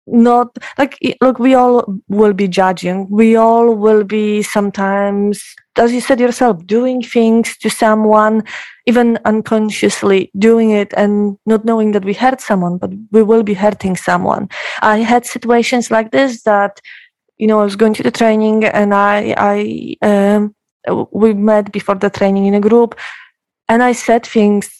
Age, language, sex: 20-39, English, female